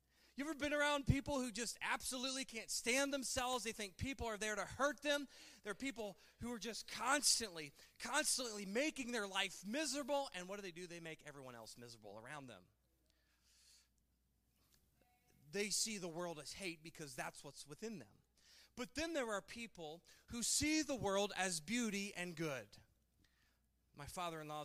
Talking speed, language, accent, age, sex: 175 wpm, English, American, 30-49, male